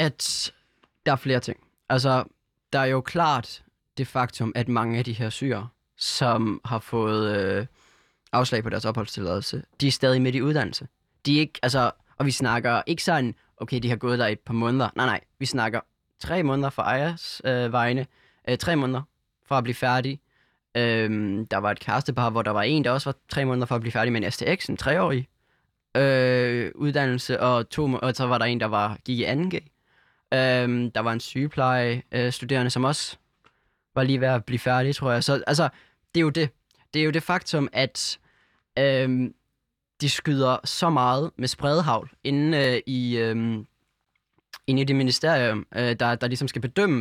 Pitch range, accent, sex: 120-140 Hz, native, male